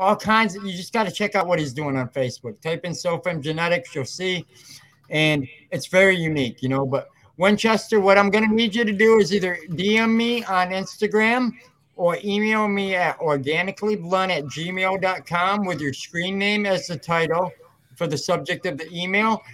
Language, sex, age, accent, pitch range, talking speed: English, male, 60-79, American, 150-200 Hz, 190 wpm